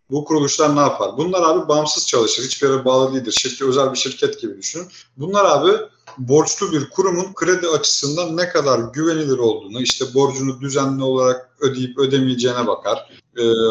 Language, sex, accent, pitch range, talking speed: Turkish, male, native, 125-180 Hz, 160 wpm